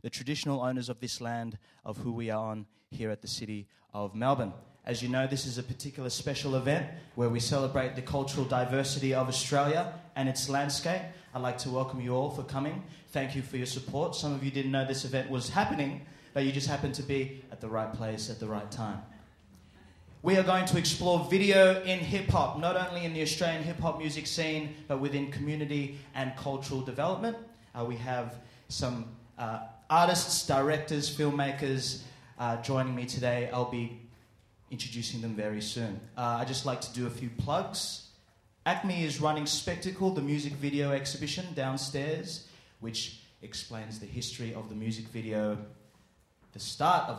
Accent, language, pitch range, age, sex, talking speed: Australian, English, 115-145 Hz, 20-39, male, 180 wpm